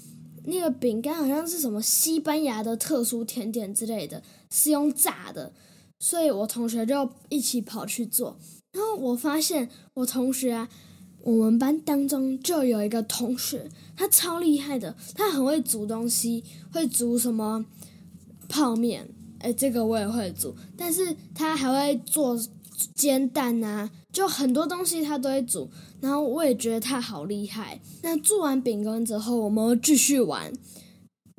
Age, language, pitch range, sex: 10-29, Chinese, 215-285 Hz, female